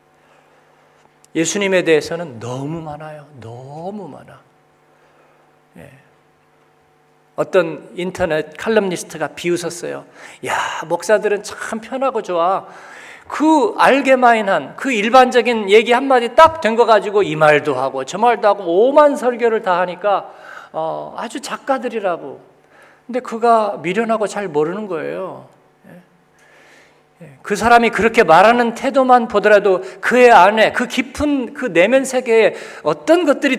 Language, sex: Korean, male